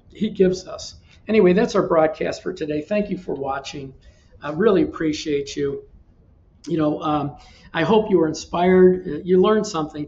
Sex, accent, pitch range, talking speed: male, American, 145-180 Hz, 165 wpm